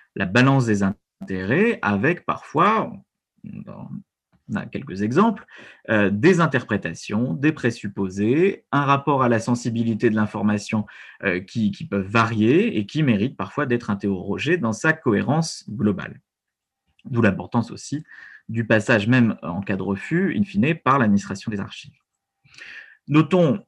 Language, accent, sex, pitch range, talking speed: French, French, male, 100-130 Hz, 135 wpm